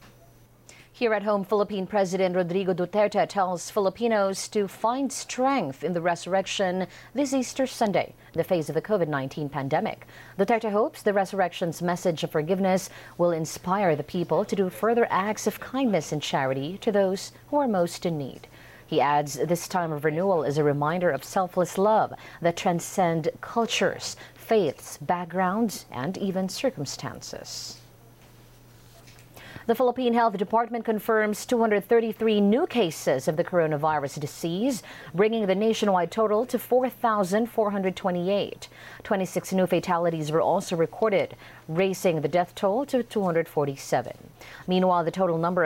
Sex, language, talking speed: female, English, 135 wpm